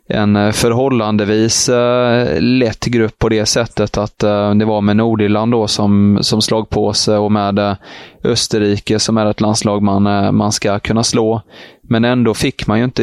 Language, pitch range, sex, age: Swedish, 105-115 Hz, male, 20-39